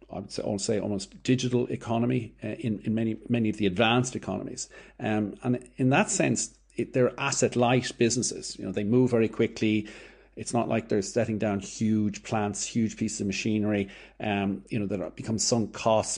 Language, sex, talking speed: English, male, 185 wpm